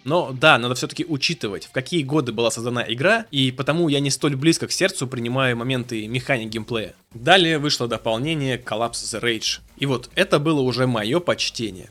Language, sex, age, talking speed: Russian, male, 20-39, 180 wpm